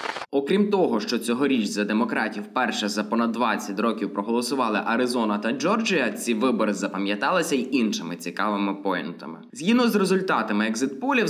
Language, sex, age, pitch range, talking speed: Ukrainian, male, 20-39, 105-155 Hz, 140 wpm